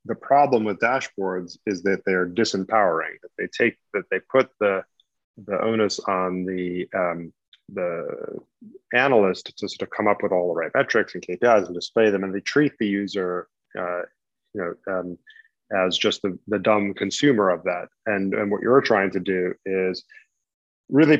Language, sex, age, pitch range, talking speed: English, male, 30-49, 95-120 Hz, 180 wpm